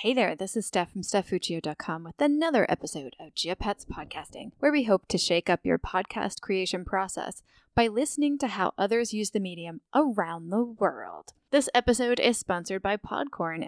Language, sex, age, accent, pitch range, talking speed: English, female, 10-29, American, 185-230 Hz, 175 wpm